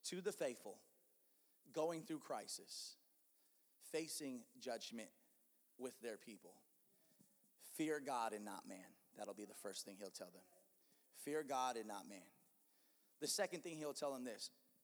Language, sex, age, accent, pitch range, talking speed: English, male, 30-49, American, 125-165 Hz, 150 wpm